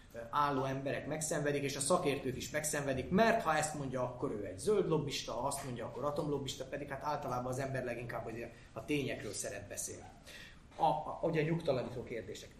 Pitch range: 120-150 Hz